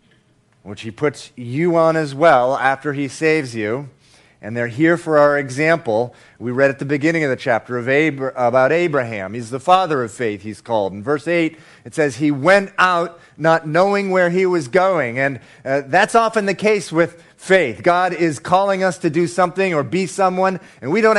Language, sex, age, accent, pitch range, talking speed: English, male, 40-59, American, 135-180 Hz, 195 wpm